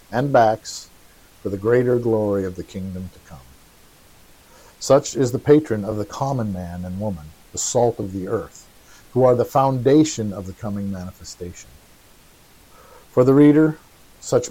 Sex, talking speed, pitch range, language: male, 155 wpm, 95-120 Hz, English